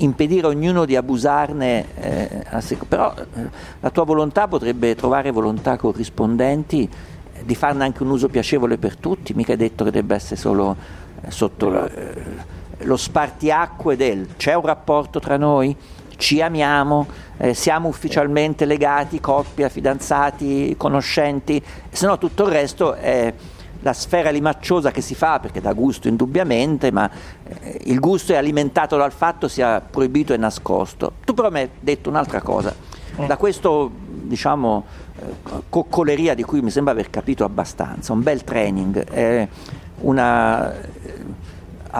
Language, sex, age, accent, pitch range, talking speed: Italian, male, 50-69, native, 115-150 Hz, 150 wpm